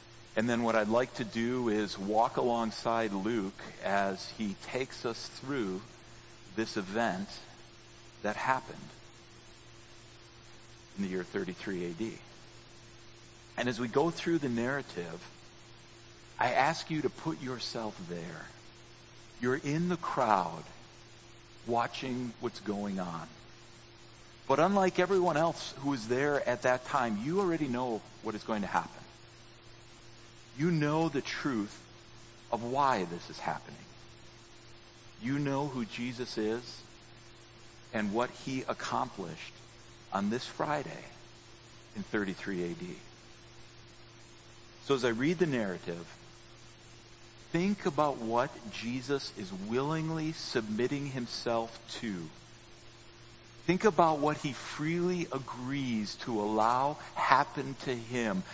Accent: American